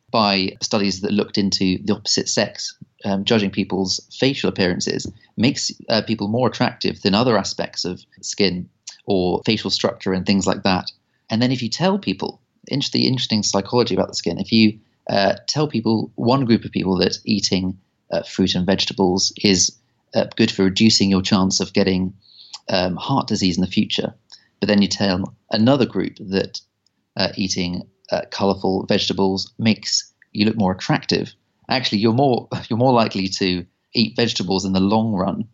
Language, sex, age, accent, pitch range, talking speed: English, male, 40-59, British, 95-115 Hz, 170 wpm